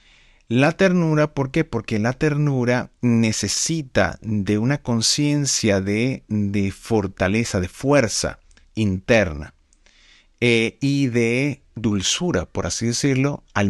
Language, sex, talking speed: Spanish, male, 110 wpm